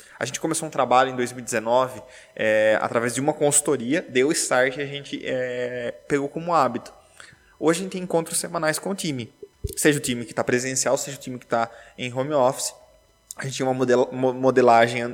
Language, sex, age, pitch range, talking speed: Portuguese, male, 20-39, 130-155 Hz, 195 wpm